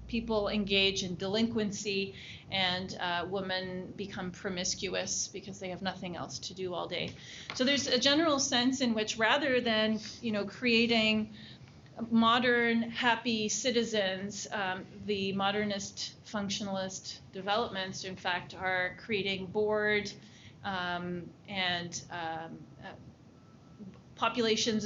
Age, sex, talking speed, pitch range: 30-49, female, 115 wpm, 185-230 Hz